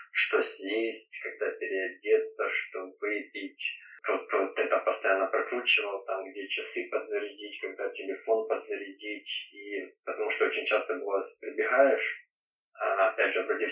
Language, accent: Ukrainian, native